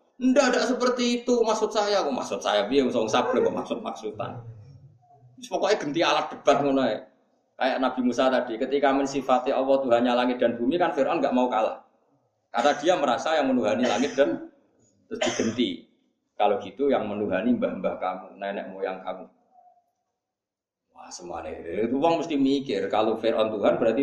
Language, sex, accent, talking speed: Indonesian, male, native, 150 wpm